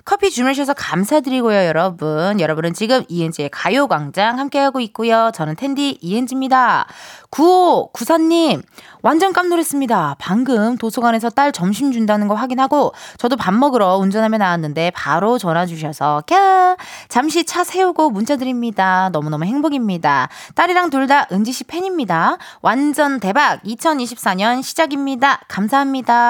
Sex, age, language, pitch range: female, 20-39, Korean, 200-300 Hz